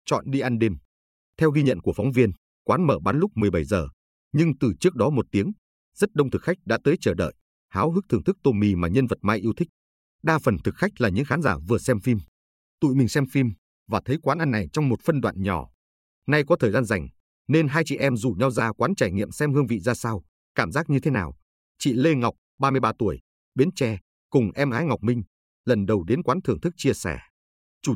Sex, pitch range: male, 90-140 Hz